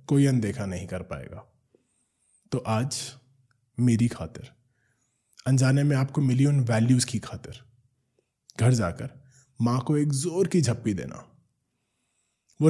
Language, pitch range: Hindi, 115-140 Hz